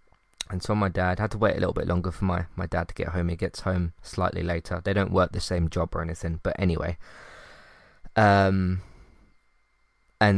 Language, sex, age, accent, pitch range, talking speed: English, male, 20-39, British, 90-105 Hz, 200 wpm